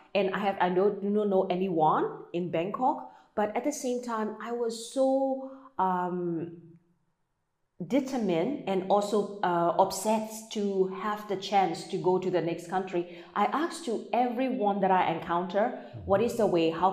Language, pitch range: German, 175-220 Hz